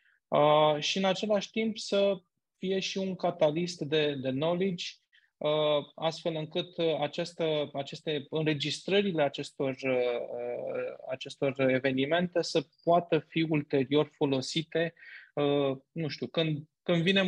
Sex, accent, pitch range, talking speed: male, native, 140-175 Hz, 120 wpm